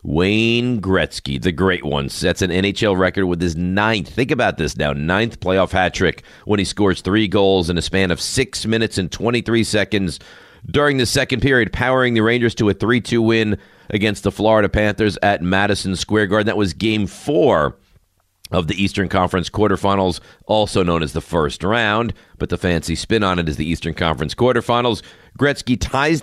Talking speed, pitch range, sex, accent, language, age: 185 wpm, 90-110 Hz, male, American, English, 40-59